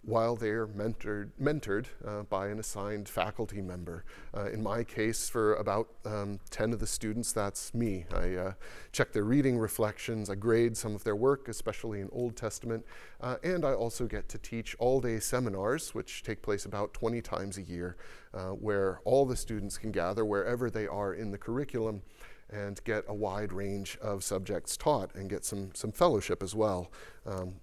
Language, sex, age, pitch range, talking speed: English, male, 30-49, 100-120 Hz, 185 wpm